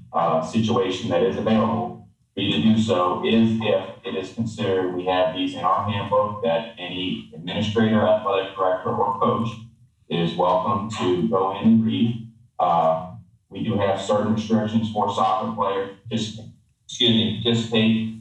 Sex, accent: male, American